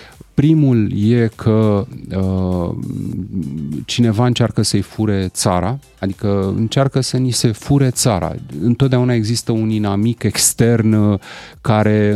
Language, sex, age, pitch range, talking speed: Romanian, male, 30-49, 95-125 Hz, 105 wpm